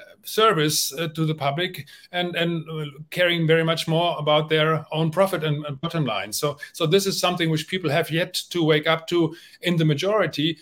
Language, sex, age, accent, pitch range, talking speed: English, male, 30-49, German, 145-165 Hz, 205 wpm